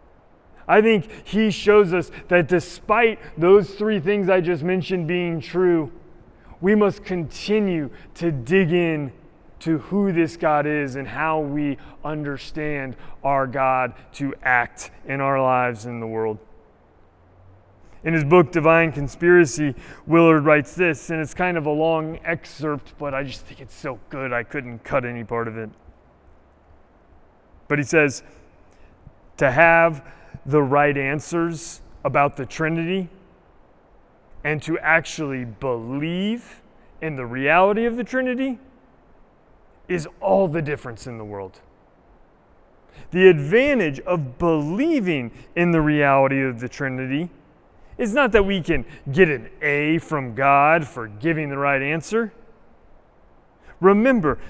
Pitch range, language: 130-180 Hz, English